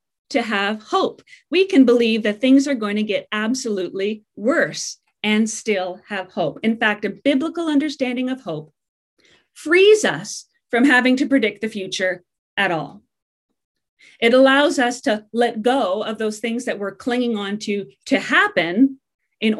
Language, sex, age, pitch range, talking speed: English, female, 40-59, 200-270 Hz, 160 wpm